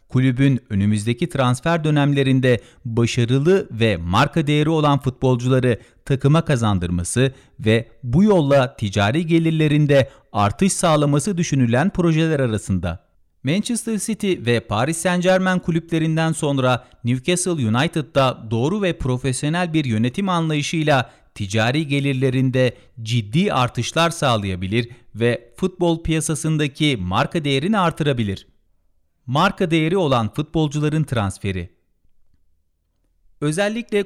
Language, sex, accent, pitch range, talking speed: Turkish, male, native, 115-160 Hz, 95 wpm